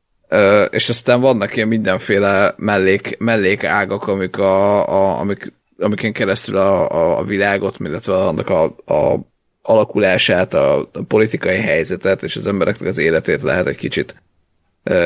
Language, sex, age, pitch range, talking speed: Hungarian, male, 30-49, 100-115 Hz, 150 wpm